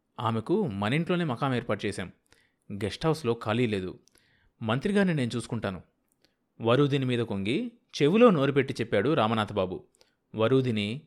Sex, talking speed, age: male, 110 wpm, 30-49